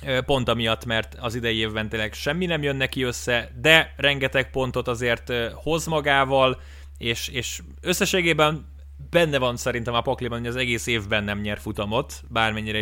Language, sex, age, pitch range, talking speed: Hungarian, male, 20-39, 110-135 Hz, 160 wpm